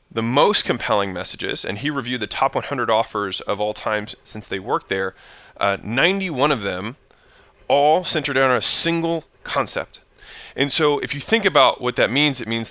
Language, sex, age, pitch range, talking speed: English, male, 20-39, 115-150 Hz, 185 wpm